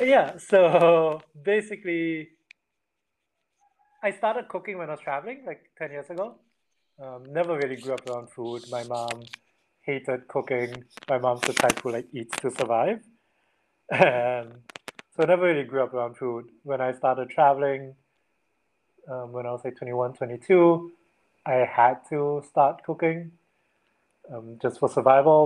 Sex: male